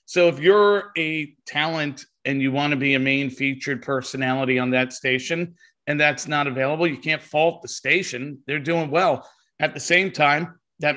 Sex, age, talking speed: male, 40-59, 185 wpm